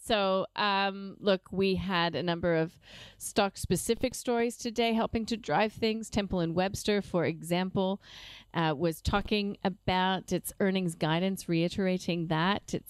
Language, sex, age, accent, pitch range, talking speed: English, female, 40-59, American, 165-210 Hz, 140 wpm